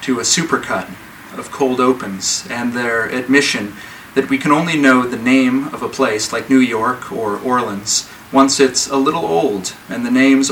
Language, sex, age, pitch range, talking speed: English, male, 40-59, 120-135 Hz, 185 wpm